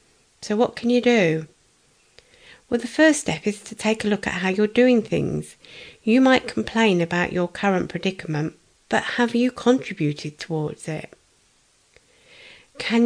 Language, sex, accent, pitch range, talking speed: English, female, British, 175-230 Hz, 150 wpm